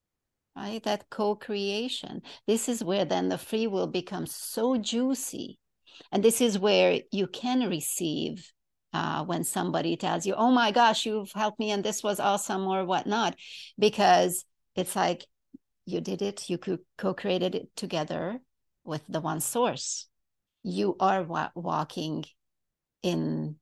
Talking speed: 140 wpm